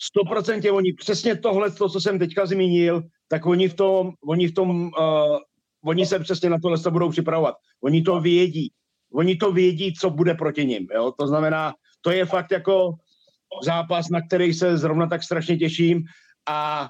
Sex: male